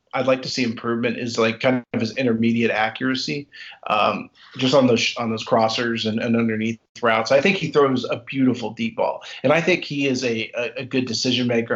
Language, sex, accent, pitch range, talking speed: English, male, American, 110-135 Hz, 210 wpm